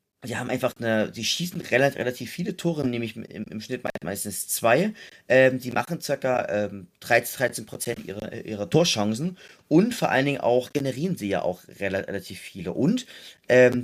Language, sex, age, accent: German, male, 30-49, German